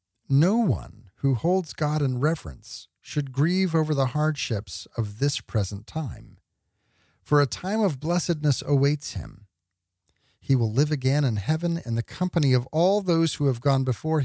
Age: 50-69